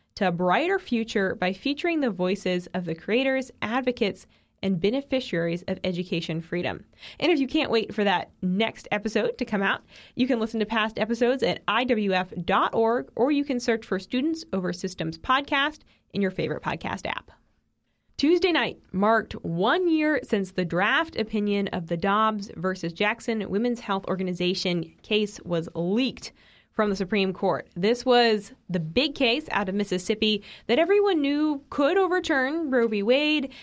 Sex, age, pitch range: female, 20-39, 185-250 Hz